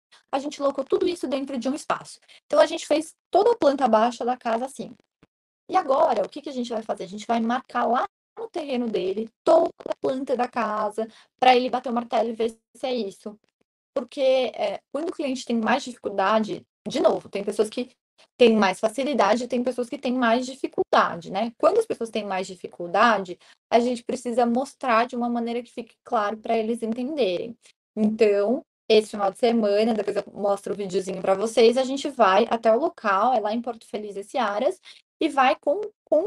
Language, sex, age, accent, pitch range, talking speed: Portuguese, female, 20-39, Brazilian, 220-275 Hz, 205 wpm